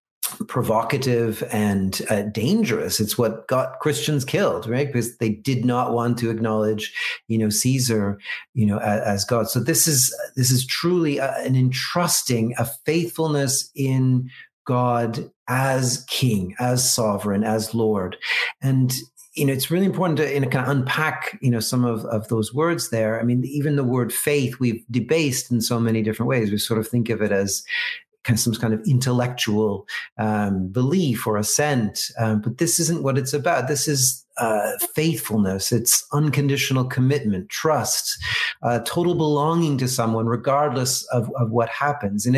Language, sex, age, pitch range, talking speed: English, male, 40-59, 115-140 Hz, 165 wpm